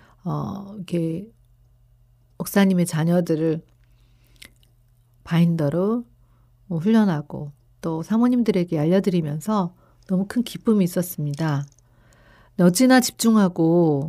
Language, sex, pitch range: Korean, female, 150-210 Hz